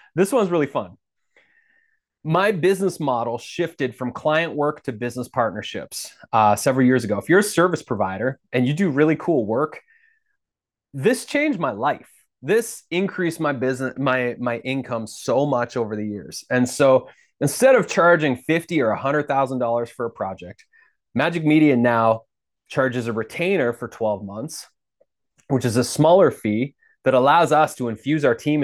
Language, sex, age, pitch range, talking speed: English, male, 30-49, 120-155 Hz, 160 wpm